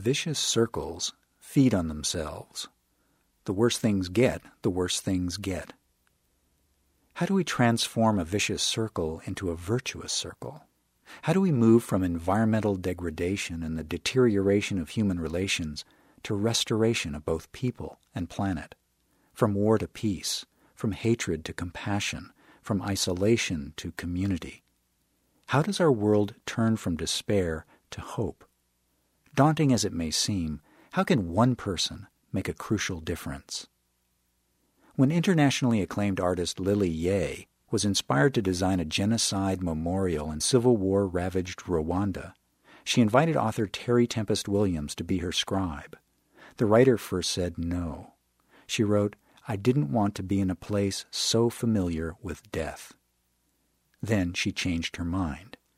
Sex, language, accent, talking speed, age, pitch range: male, English, American, 140 wpm, 50-69, 85-115 Hz